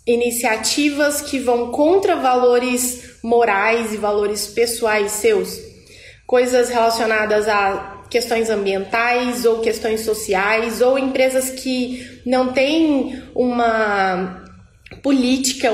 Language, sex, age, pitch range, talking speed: Portuguese, female, 20-39, 220-260 Hz, 95 wpm